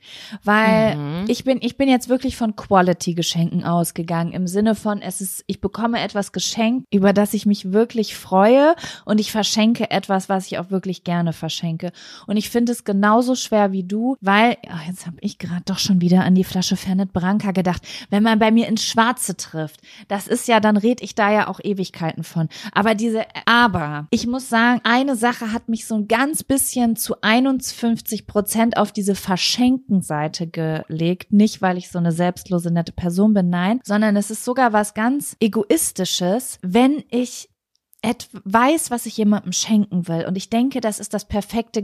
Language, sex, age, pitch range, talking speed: German, female, 20-39, 185-230 Hz, 190 wpm